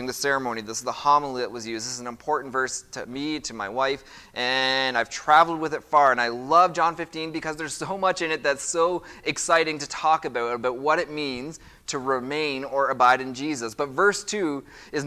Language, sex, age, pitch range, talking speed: English, male, 20-39, 125-160 Hz, 225 wpm